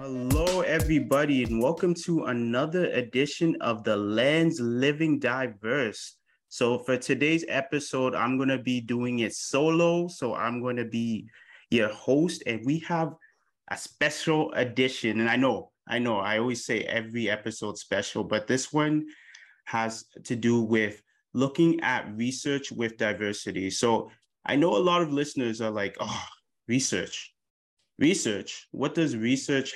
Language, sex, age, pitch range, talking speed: English, male, 20-39, 115-145 Hz, 150 wpm